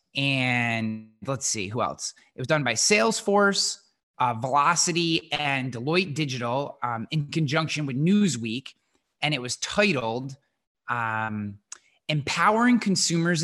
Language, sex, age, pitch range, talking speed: English, male, 20-39, 120-160 Hz, 120 wpm